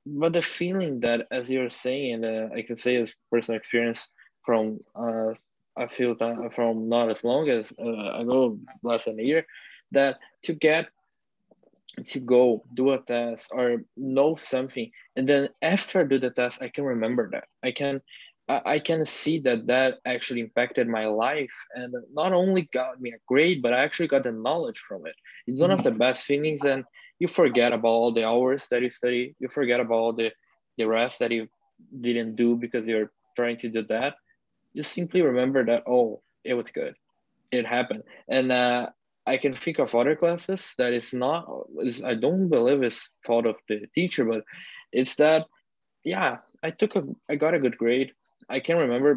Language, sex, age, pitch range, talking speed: English, male, 20-39, 120-155 Hz, 195 wpm